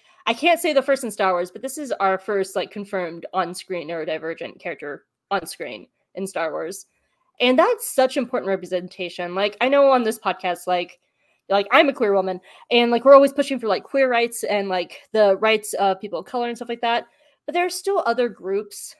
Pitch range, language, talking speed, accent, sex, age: 190-255 Hz, English, 215 wpm, American, female, 20-39